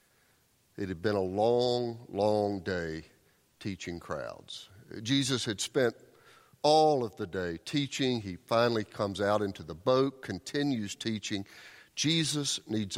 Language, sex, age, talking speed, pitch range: English, male, 50-69, 130 wpm, 105-140 Hz